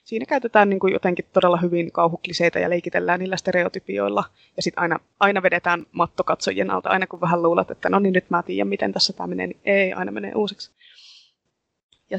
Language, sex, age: Finnish, female, 20-39